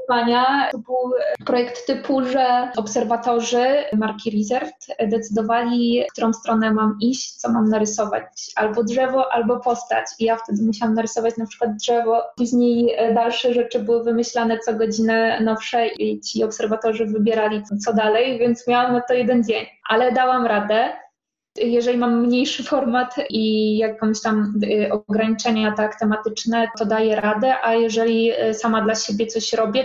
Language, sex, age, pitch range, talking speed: Polish, female, 20-39, 215-235 Hz, 145 wpm